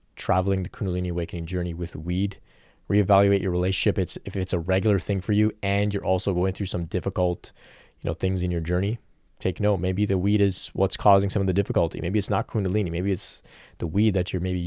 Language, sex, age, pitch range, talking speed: English, male, 20-39, 90-110 Hz, 220 wpm